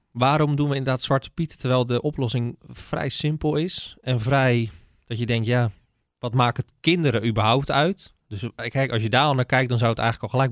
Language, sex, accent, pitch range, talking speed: Dutch, male, Dutch, 110-145 Hz, 215 wpm